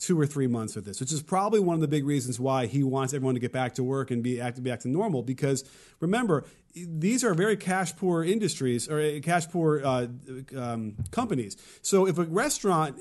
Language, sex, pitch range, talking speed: English, male, 130-185 Hz, 215 wpm